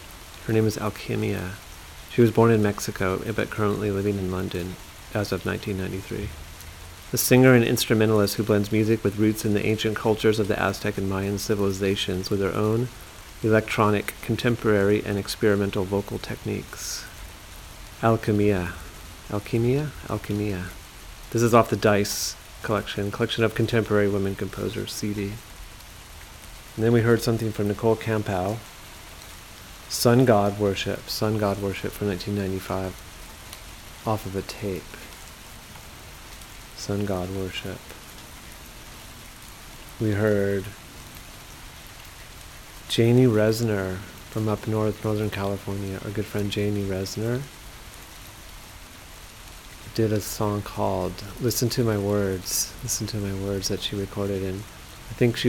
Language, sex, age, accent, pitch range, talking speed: English, male, 40-59, American, 95-110 Hz, 125 wpm